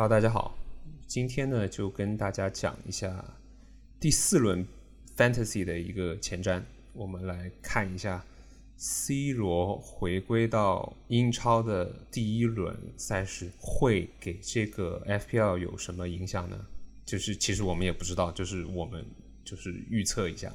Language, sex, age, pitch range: Chinese, male, 20-39, 90-115 Hz